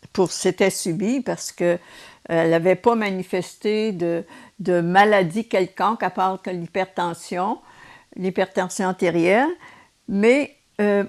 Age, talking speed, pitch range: 60-79, 120 wpm, 185-230 Hz